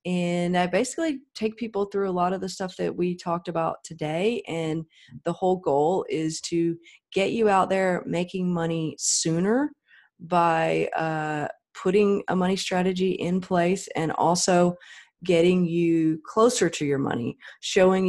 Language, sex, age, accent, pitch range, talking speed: English, female, 30-49, American, 160-195 Hz, 155 wpm